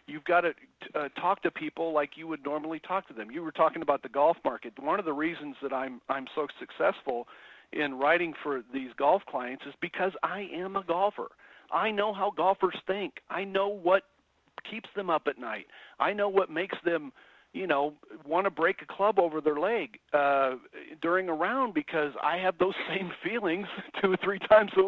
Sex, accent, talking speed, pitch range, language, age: male, American, 205 wpm, 150-200 Hz, English, 50-69